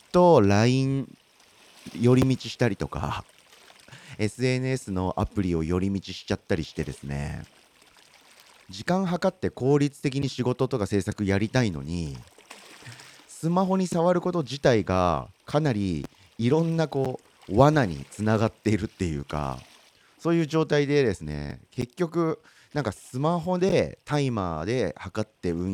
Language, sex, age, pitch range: Japanese, male, 40-59, 85-130 Hz